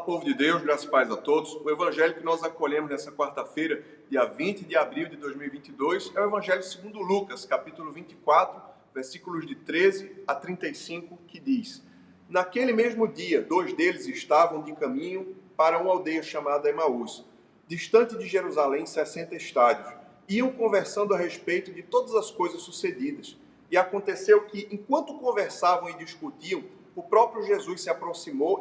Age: 40-59